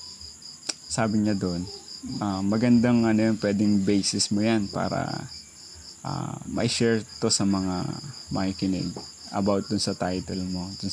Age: 20-39